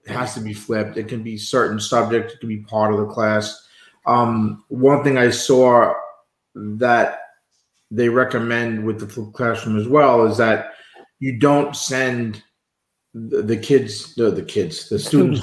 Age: 40-59